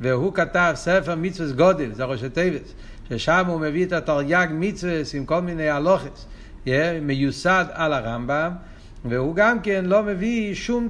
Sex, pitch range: male, 140-205 Hz